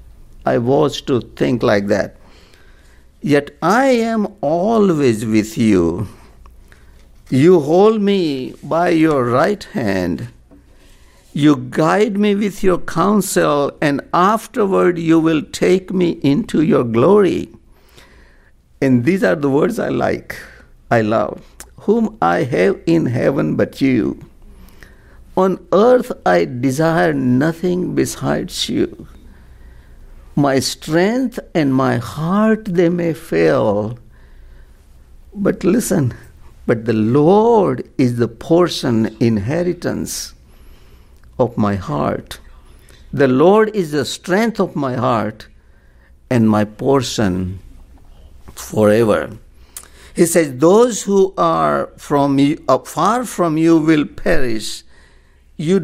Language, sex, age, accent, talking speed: English, male, 60-79, Indian, 110 wpm